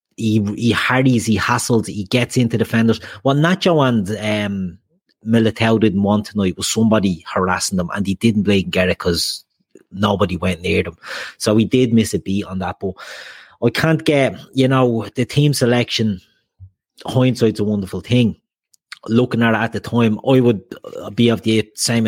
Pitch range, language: 100-125 Hz, English